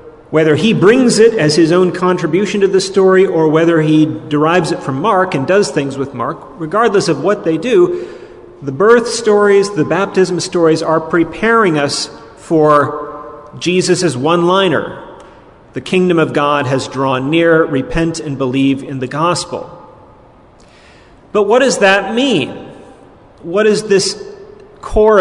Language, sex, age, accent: English, male, 40-59, American